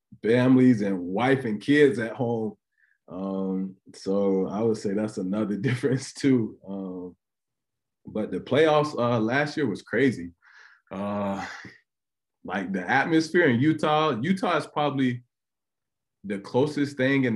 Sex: male